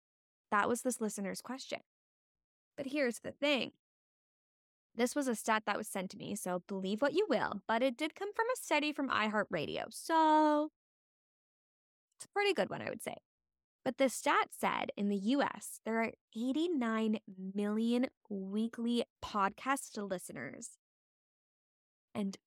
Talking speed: 150 wpm